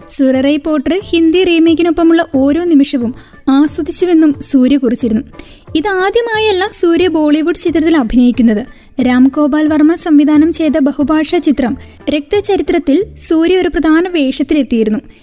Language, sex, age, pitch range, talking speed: Malayalam, female, 20-39, 275-345 Hz, 100 wpm